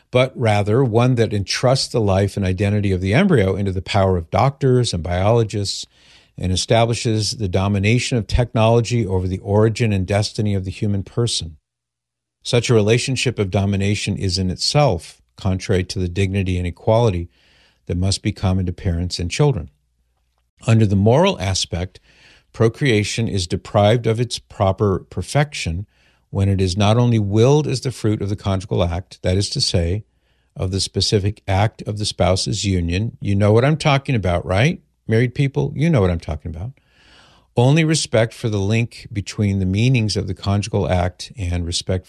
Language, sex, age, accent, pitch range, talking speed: English, male, 50-69, American, 90-115 Hz, 175 wpm